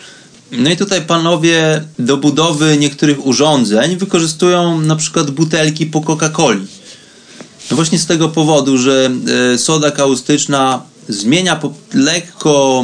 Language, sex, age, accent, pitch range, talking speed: Polish, male, 30-49, native, 135-175 Hz, 105 wpm